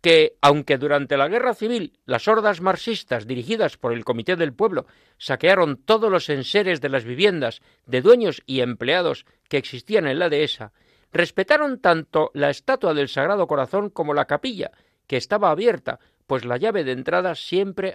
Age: 50-69